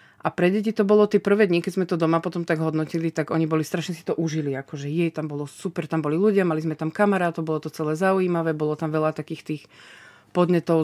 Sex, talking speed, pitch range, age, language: female, 245 wpm, 160-185 Hz, 30-49, Slovak